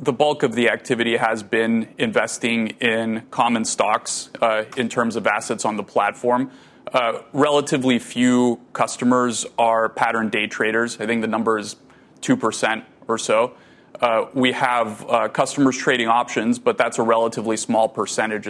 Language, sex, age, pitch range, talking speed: English, male, 30-49, 110-125 Hz, 155 wpm